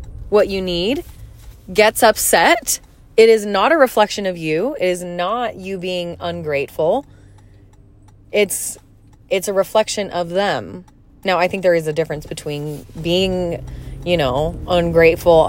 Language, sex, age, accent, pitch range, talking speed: English, female, 20-39, American, 155-205 Hz, 140 wpm